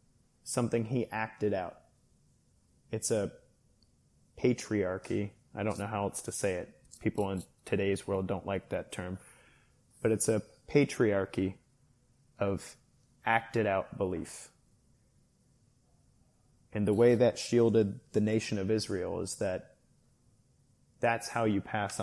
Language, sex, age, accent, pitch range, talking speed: English, male, 30-49, American, 105-125 Hz, 125 wpm